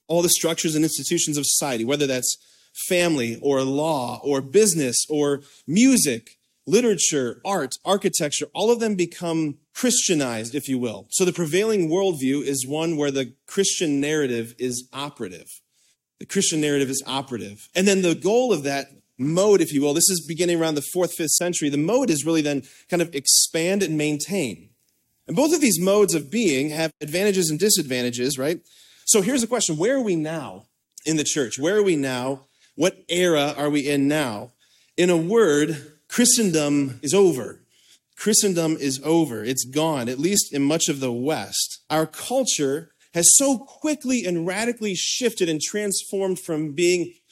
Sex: male